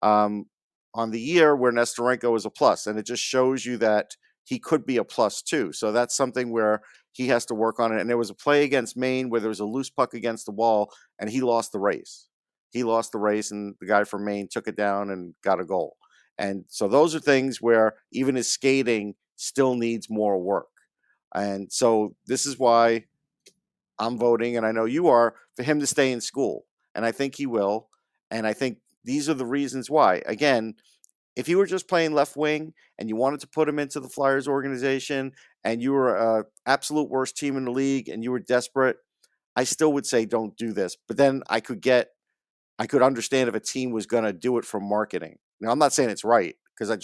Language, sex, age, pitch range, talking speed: English, male, 50-69, 110-135 Hz, 225 wpm